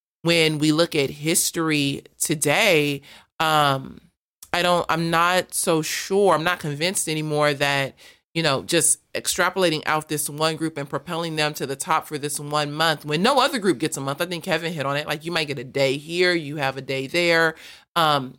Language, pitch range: English, 145-170 Hz